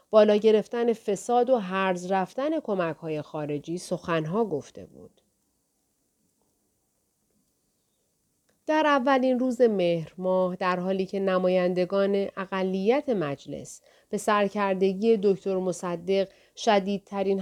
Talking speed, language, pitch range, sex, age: 95 wpm, Persian, 175-240 Hz, female, 40-59